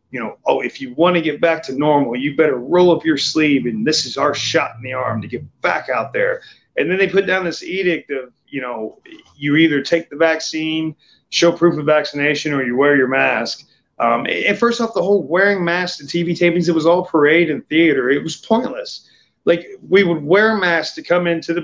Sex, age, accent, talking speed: male, 30-49, American, 230 wpm